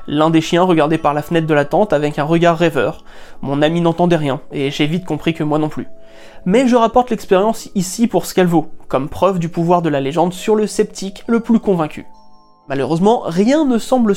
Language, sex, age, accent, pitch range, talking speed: French, male, 30-49, French, 160-230 Hz, 220 wpm